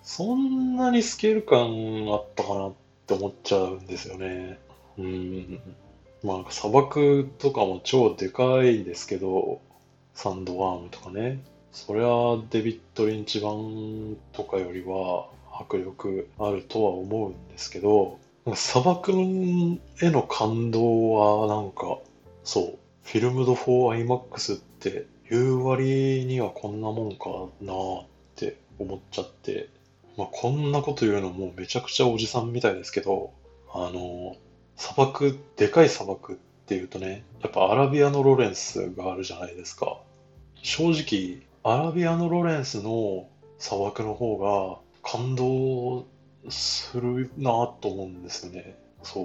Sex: male